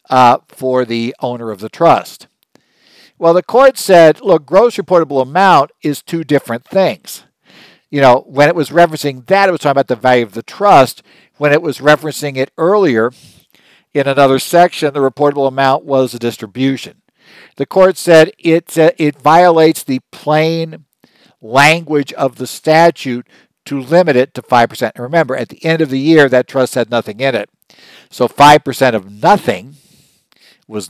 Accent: American